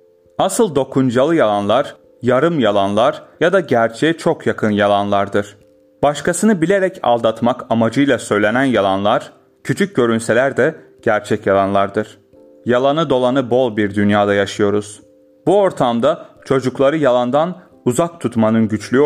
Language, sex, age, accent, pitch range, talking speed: Turkish, male, 30-49, native, 105-150 Hz, 110 wpm